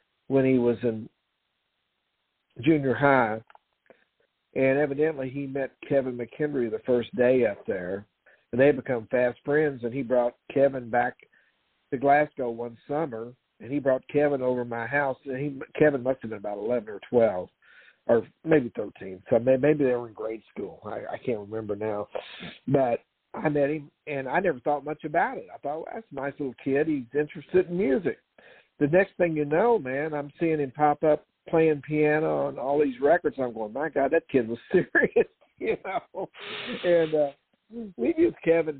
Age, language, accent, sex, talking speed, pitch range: 60-79, English, American, male, 180 wpm, 125-155 Hz